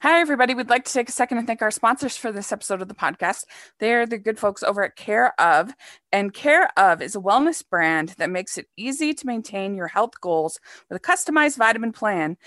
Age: 20-39